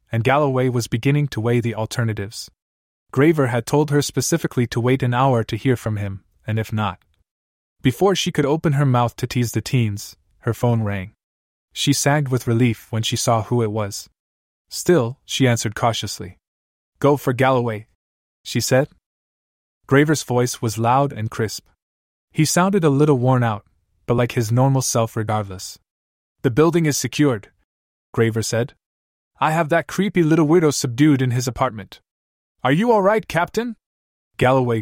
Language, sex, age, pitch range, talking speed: English, male, 20-39, 100-140 Hz, 165 wpm